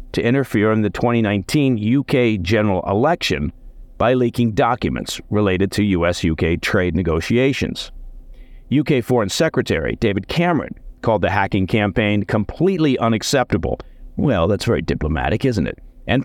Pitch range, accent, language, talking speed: 95-130 Hz, American, English, 130 wpm